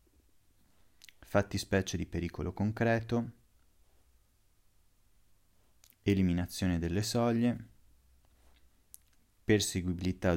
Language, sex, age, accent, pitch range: Italian, male, 30-49, native, 80-100 Hz